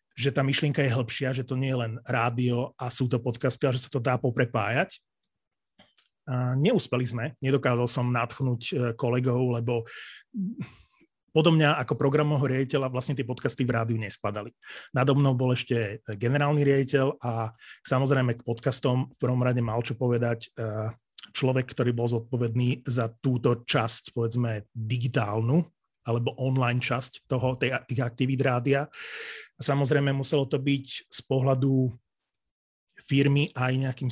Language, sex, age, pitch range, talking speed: Slovak, male, 30-49, 120-145 Hz, 140 wpm